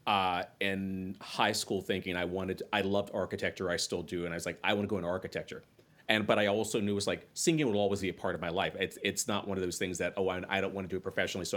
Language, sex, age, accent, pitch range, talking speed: English, male, 30-49, American, 85-100 Hz, 295 wpm